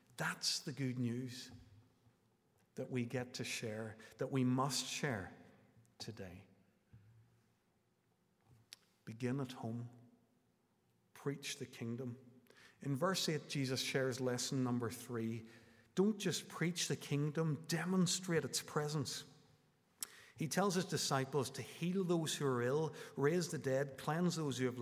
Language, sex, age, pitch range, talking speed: English, male, 50-69, 115-150 Hz, 130 wpm